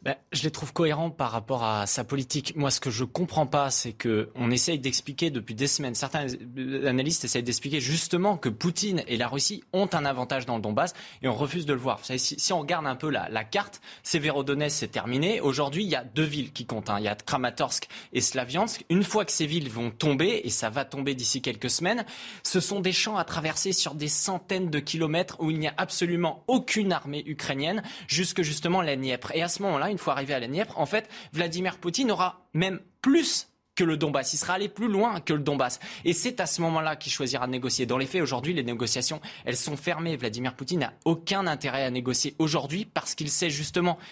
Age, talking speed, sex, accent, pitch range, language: 20-39, 230 wpm, male, French, 130-175 Hz, French